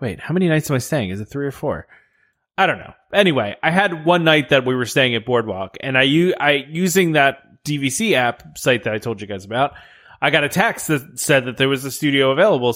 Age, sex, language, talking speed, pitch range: 20-39, male, English, 245 wpm, 120-150 Hz